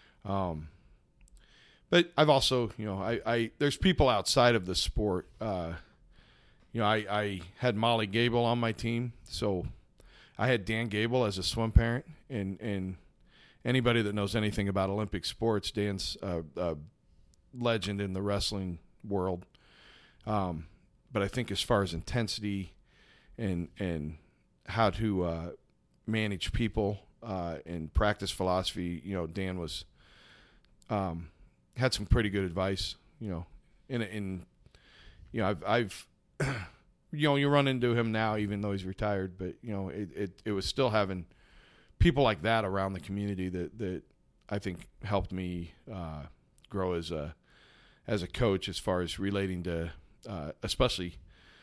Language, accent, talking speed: English, American, 155 wpm